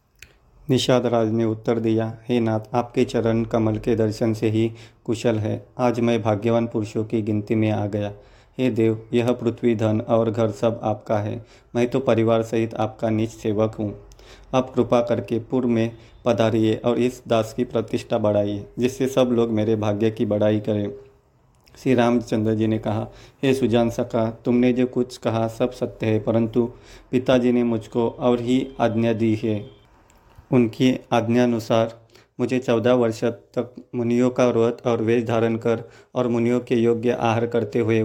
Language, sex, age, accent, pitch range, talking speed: Hindi, male, 40-59, native, 110-120 Hz, 170 wpm